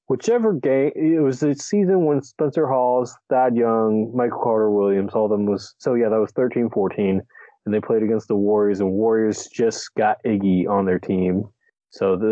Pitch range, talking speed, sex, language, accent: 100-125 Hz, 180 wpm, male, English, American